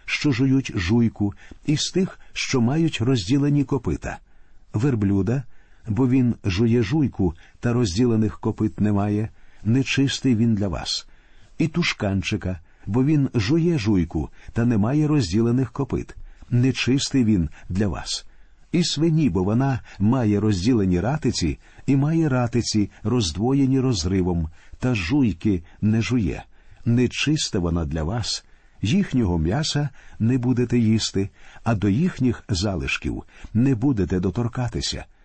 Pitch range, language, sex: 100-135 Hz, Ukrainian, male